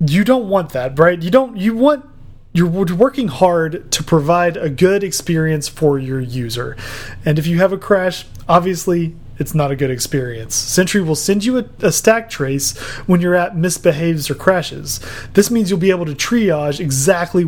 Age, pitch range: 30-49, 145-190 Hz